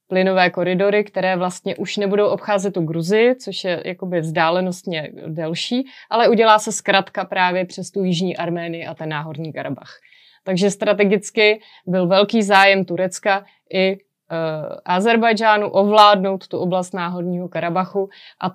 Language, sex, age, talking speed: Slovak, female, 30-49, 135 wpm